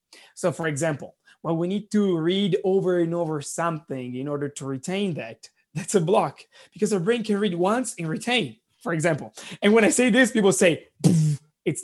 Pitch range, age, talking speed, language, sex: 155-205 Hz, 20-39, 195 wpm, English, male